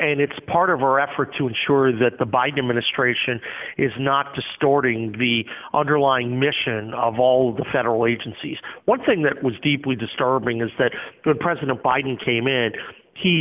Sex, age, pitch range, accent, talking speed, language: male, 40-59, 125-155 Hz, American, 165 wpm, English